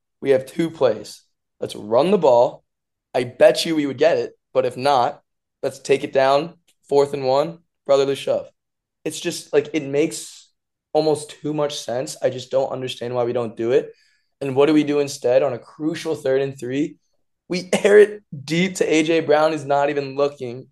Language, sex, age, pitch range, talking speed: English, male, 20-39, 125-160 Hz, 195 wpm